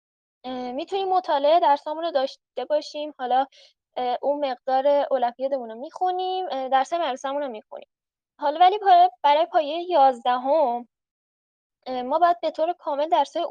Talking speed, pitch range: 130 wpm, 245-290 Hz